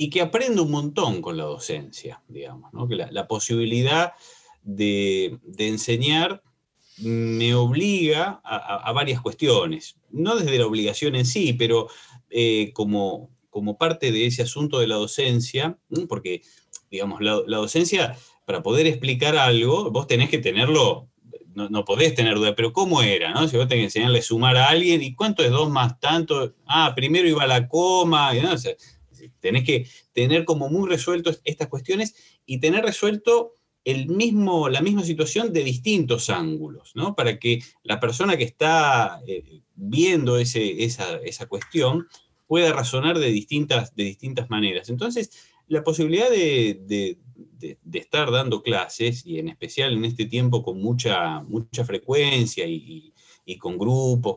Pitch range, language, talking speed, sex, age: 115-165 Hz, Spanish, 165 wpm, male, 30-49